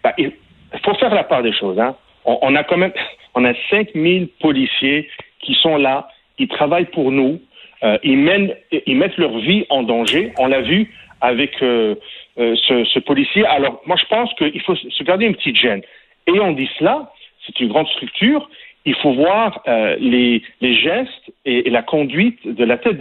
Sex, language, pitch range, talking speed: male, French, 135-220 Hz, 195 wpm